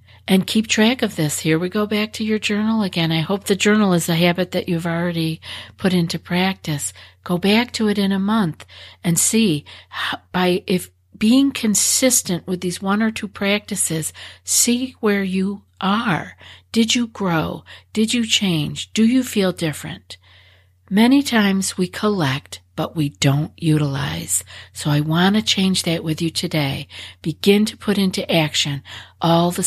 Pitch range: 140-200 Hz